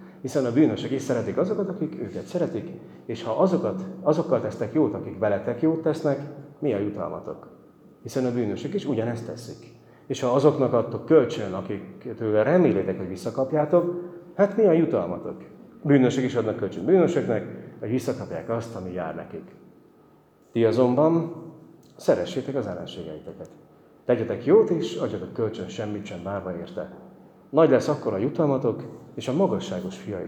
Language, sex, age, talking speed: Hungarian, male, 30-49, 150 wpm